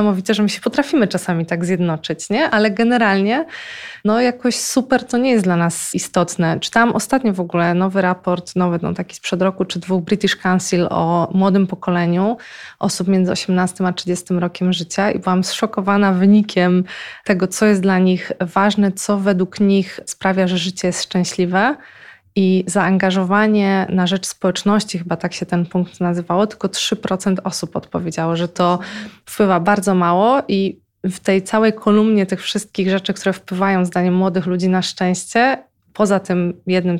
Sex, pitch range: female, 180-210 Hz